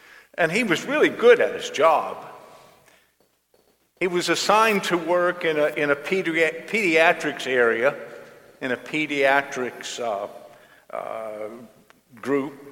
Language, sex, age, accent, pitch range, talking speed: English, male, 50-69, American, 135-195 Hz, 125 wpm